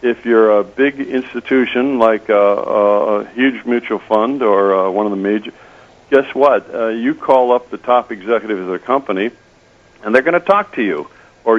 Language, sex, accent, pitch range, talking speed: English, male, American, 110-150 Hz, 190 wpm